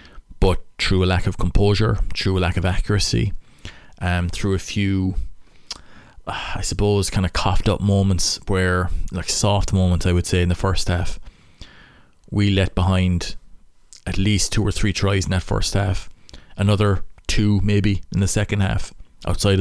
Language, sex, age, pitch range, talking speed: English, male, 20-39, 90-100 Hz, 165 wpm